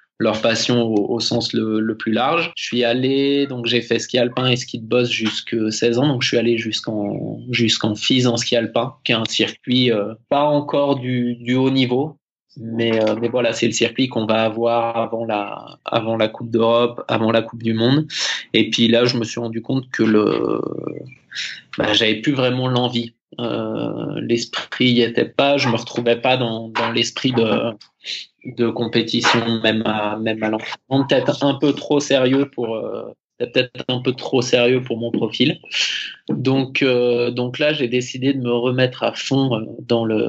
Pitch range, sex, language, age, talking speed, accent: 115-125 Hz, male, French, 20-39, 190 wpm, French